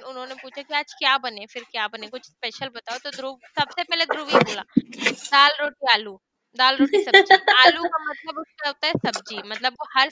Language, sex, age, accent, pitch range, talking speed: Hindi, female, 20-39, native, 235-295 Hz, 200 wpm